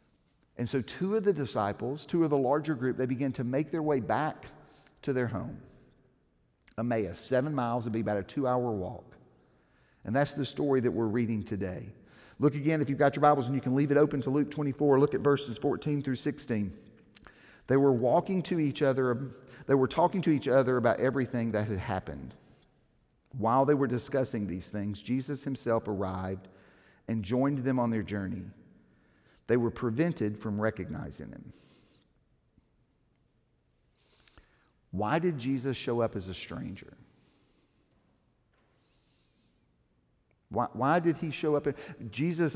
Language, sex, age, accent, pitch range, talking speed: English, male, 50-69, American, 120-165 Hz, 160 wpm